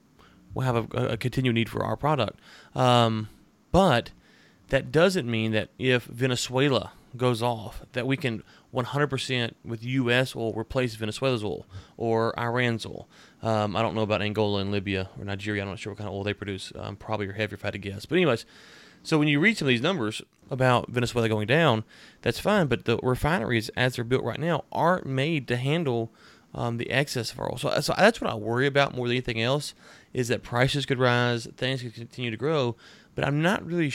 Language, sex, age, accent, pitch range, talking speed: English, male, 30-49, American, 110-130 Hz, 210 wpm